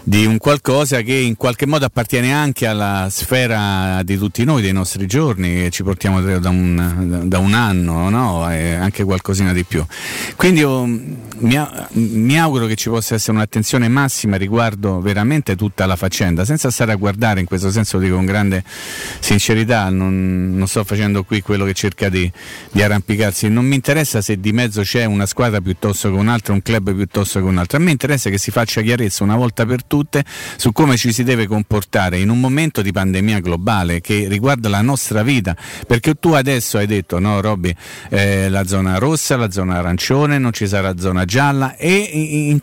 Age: 40-59